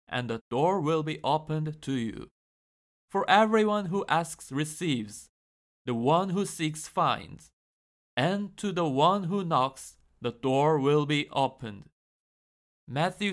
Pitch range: 125-165 Hz